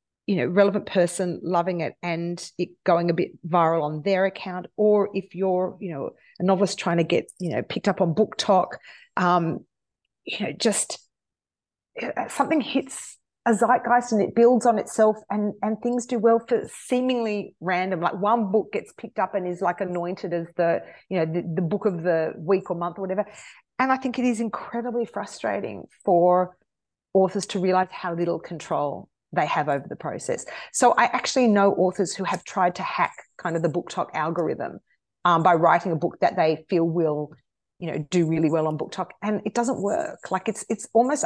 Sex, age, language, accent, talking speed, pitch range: female, 40-59, English, Australian, 195 wpm, 175-220 Hz